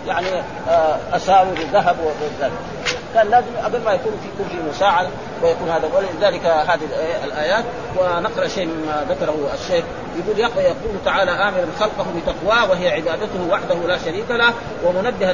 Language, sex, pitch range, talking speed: Arabic, male, 175-215 Hz, 135 wpm